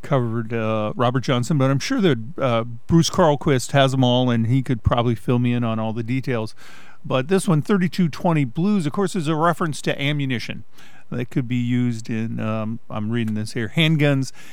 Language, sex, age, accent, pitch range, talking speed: English, male, 50-69, American, 120-150 Hz, 200 wpm